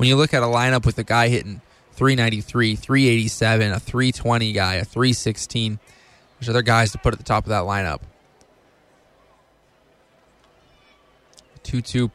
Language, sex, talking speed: English, male, 145 wpm